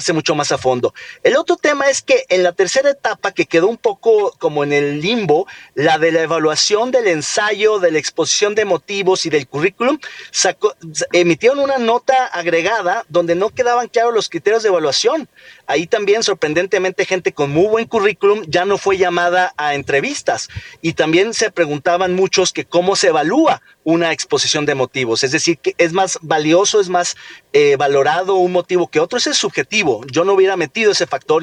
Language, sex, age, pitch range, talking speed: Spanish, male, 40-59, 155-230 Hz, 185 wpm